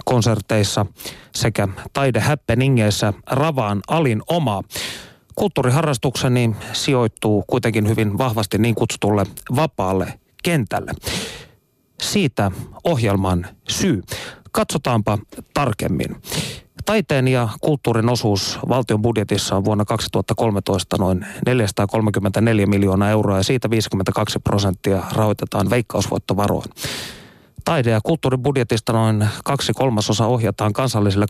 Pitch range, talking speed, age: 105-130 Hz, 90 wpm, 30-49